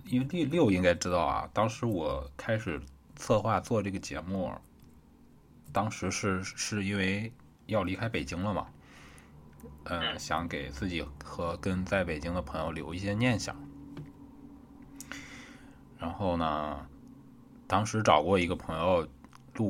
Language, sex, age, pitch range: Chinese, male, 20-39, 85-115 Hz